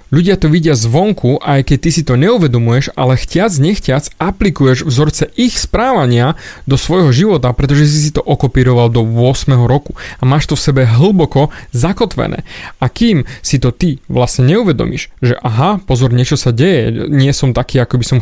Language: Slovak